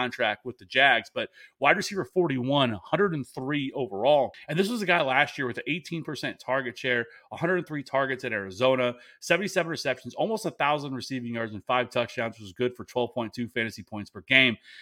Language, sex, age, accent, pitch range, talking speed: English, male, 30-49, American, 120-140 Hz, 185 wpm